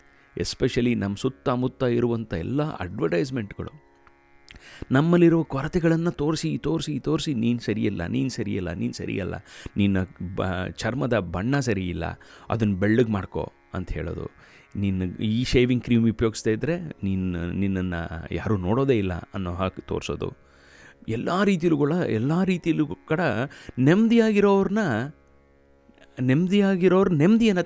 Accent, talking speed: native, 100 wpm